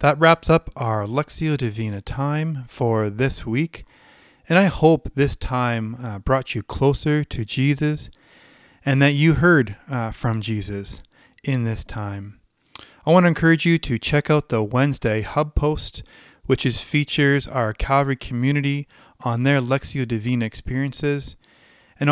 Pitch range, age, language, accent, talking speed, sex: 115-145 Hz, 30-49, English, American, 140 wpm, male